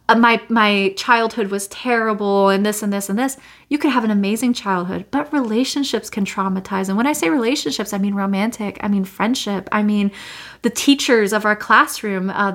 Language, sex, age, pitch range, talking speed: English, female, 30-49, 195-235 Hz, 190 wpm